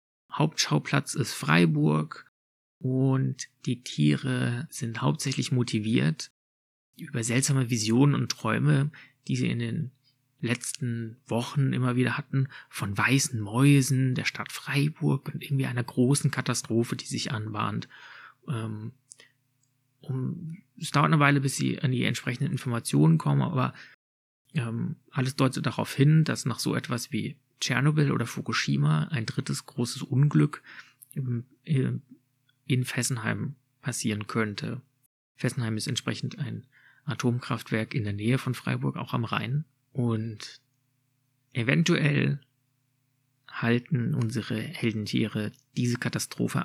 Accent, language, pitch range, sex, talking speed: German, German, 115-135 Hz, male, 115 wpm